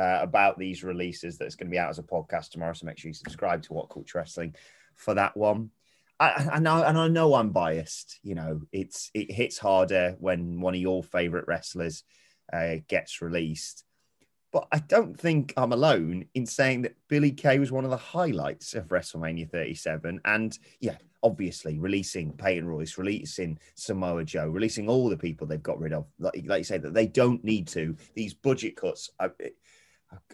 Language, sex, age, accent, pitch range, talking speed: English, male, 30-49, British, 80-130 Hz, 195 wpm